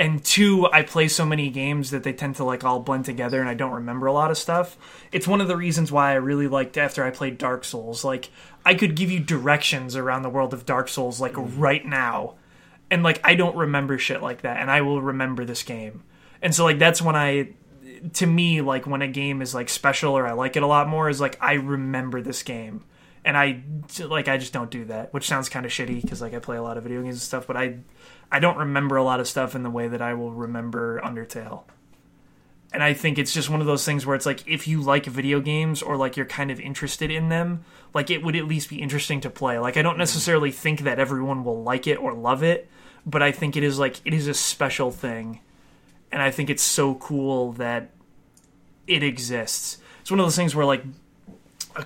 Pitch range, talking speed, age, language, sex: 130-155 Hz, 245 wpm, 20-39, English, male